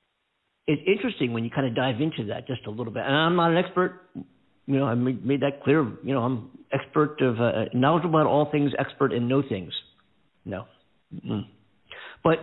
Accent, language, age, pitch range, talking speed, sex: American, English, 50-69, 115-150 Hz, 210 wpm, male